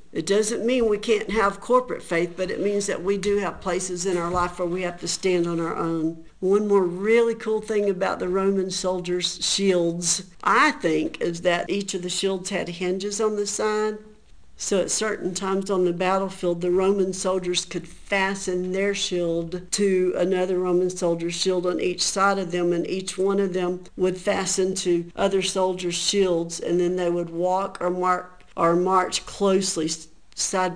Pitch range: 175-195 Hz